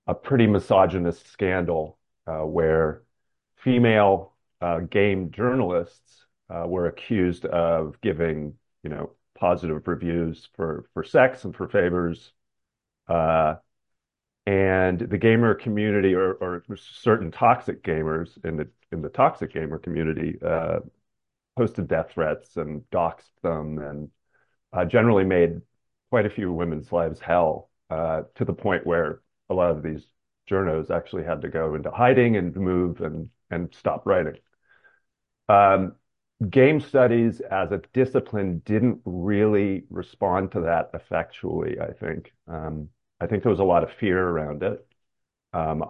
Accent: American